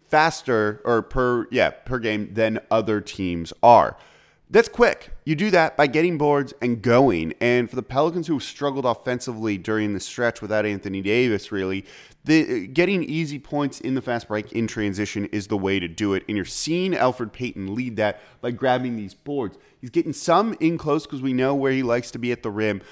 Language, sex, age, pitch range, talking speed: English, male, 30-49, 105-135 Hz, 205 wpm